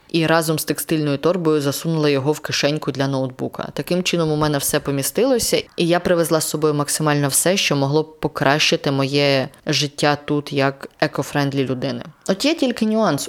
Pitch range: 145-175 Hz